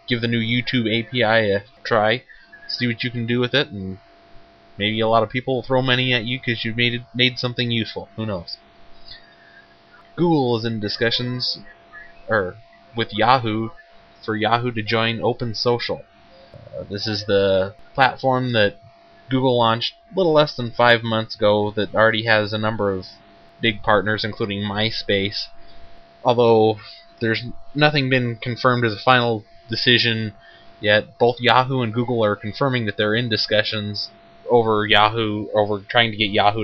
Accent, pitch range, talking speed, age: American, 105-125 Hz, 165 wpm, 20-39